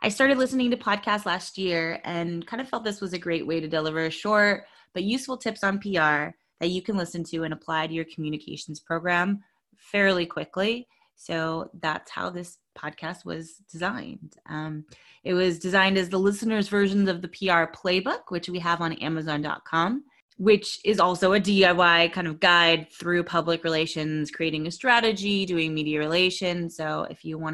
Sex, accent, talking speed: female, American, 180 wpm